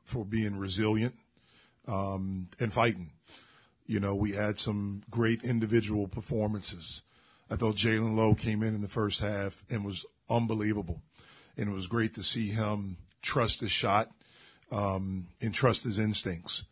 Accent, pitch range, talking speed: American, 100-115 Hz, 150 wpm